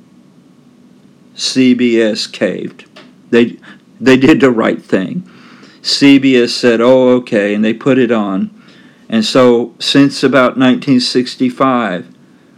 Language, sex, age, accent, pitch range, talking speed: English, male, 50-69, American, 110-130 Hz, 105 wpm